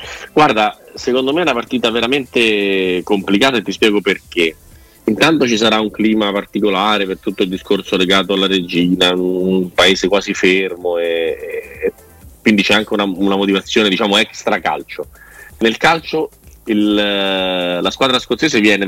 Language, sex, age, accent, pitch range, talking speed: Italian, male, 30-49, native, 95-120 Hz, 140 wpm